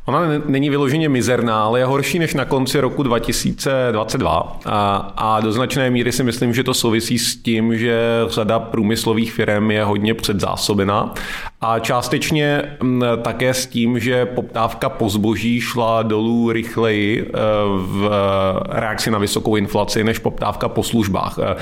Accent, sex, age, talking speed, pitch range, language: native, male, 30-49, 145 wpm, 105-120 Hz, Czech